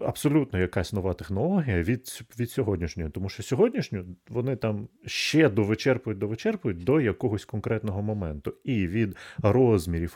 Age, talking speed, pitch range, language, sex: 30-49, 125 wpm, 90-120 Hz, Ukrainian, male